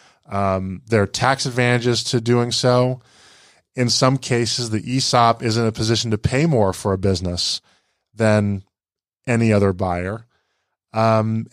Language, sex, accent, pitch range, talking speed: English, male, American, 105-125 Hz, 145 wpm